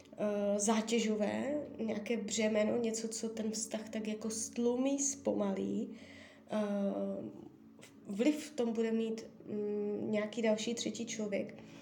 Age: 20-39